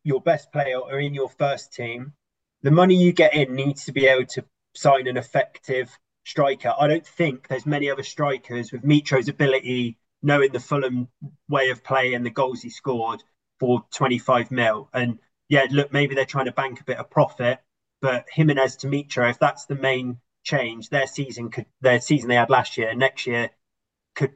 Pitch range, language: 120-140 Hz, English